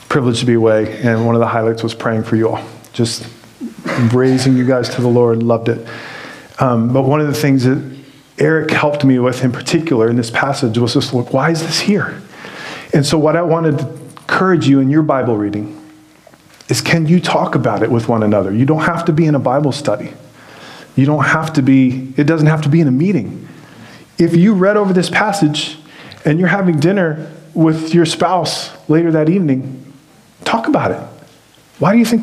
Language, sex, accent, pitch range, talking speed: English, male, American, 130-170 Hz, 210 wpm